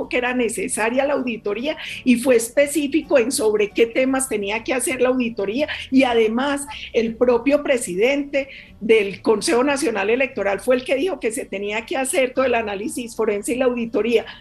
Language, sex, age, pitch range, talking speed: Spanish, female, 40-59, 225-280 Hz, 175 wpm